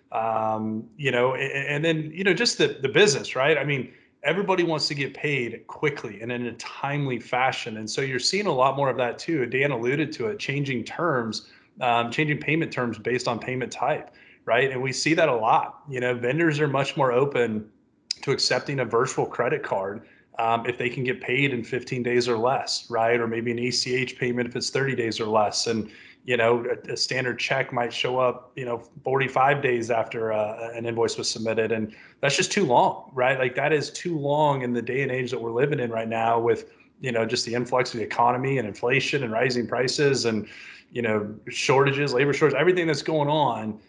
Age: 20-39